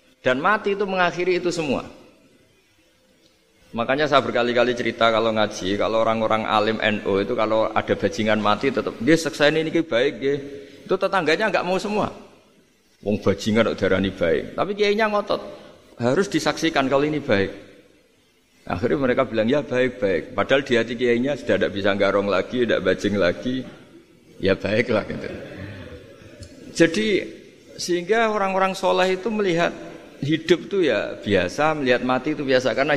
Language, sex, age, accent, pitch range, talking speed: Indonesian, male, 50-69, native, 110-185 Hz, 145 wpm